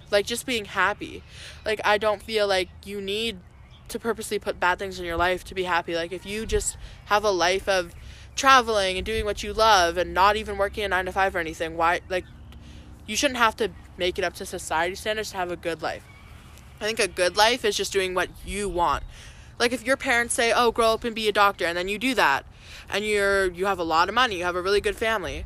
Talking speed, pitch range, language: 245 wpm, 180-215 Hz, English